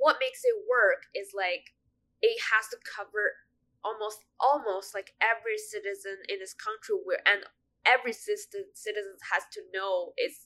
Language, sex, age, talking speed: English, female, 10-29, 155 wpm